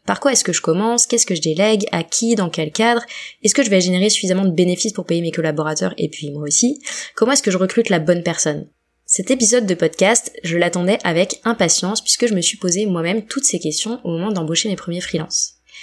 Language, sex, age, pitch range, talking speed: French, female, 20-39, 165-215 Hz, 235 wpm